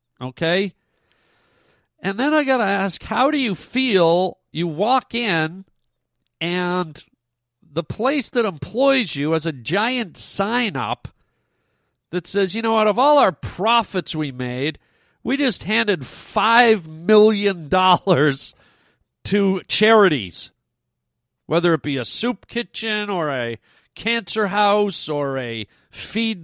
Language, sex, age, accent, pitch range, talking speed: English, male, 40-59, American, 165-225 Hz, 125 wpm